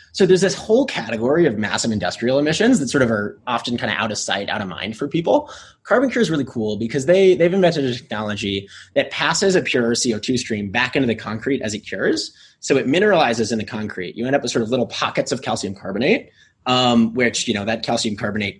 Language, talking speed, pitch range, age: English, 235 wpm, 110-145 Hz, 20-39